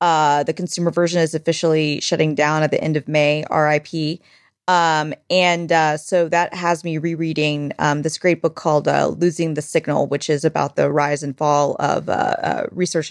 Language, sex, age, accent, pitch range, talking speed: English, female, 20-39, American, 150-175 Hz, 190 wpm